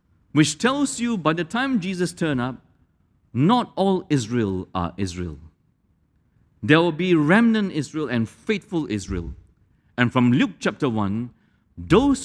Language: English